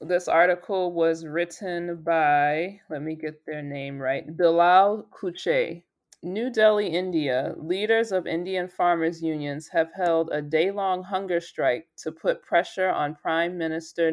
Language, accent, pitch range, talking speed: English, American, 155-180 Hz, 140 wpm